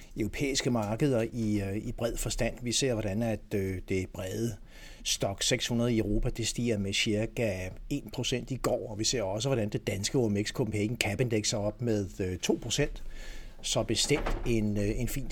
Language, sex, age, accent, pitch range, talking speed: Danish, male, 60-79, native, 105-125 Hz, 170 wpm